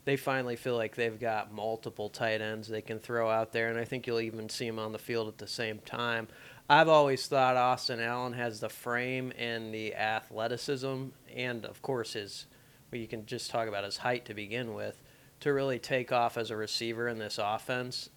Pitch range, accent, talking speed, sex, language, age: 115-135 Hz, American, 210 wpm, male, English, 30-49